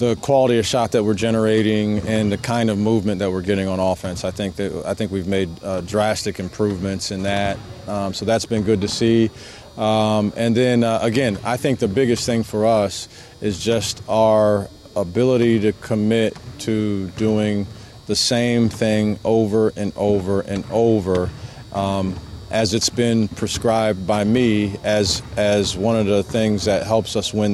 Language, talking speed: English, 175 wpm